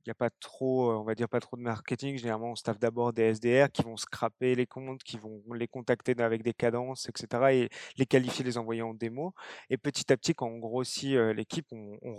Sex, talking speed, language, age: male, 230 wpm, French, 20-39